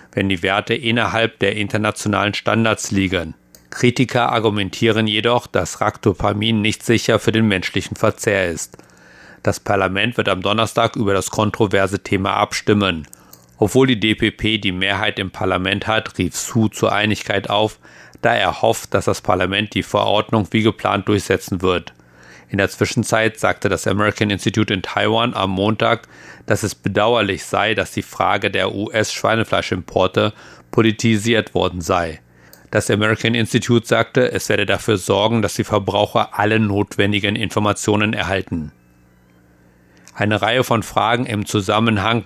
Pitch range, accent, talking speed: 95-110 Hz, German, 140 wpm